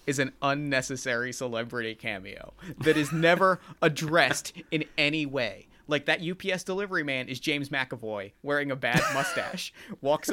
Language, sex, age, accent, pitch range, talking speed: English, male, 30-49, American, 135-180 Hz, 145 wpm